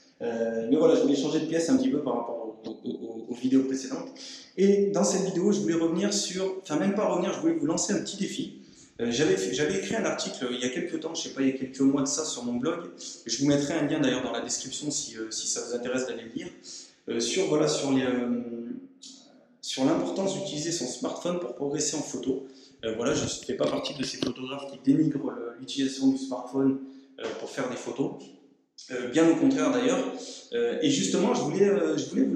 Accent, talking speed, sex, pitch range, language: French, 235 wpm, male, 125-195 Hz, French